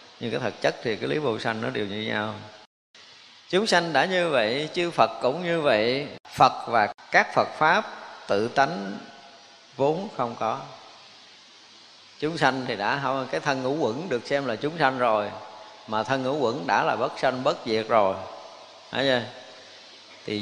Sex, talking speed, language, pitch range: male, 175 wpm, Vietnamese, 115-170 Hz